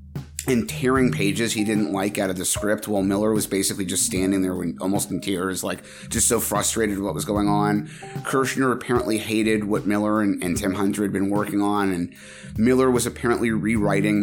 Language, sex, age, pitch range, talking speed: English, male, 30-49, 100-115 Hz, 200 wpm